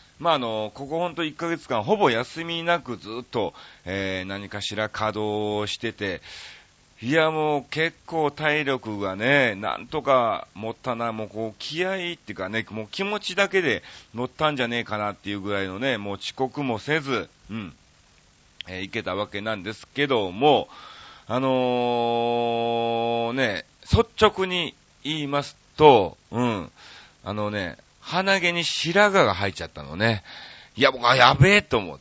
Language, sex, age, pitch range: Japanese, male, 40-59, 105-145 Hz